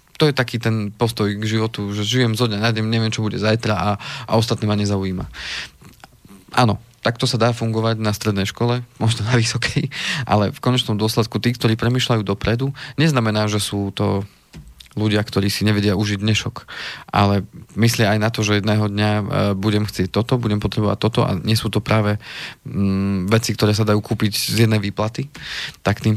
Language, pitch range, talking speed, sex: Slovak, 105-115 Hz, 185 wpm, male